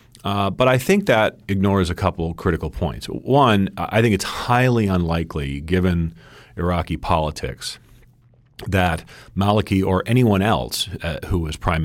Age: 40-59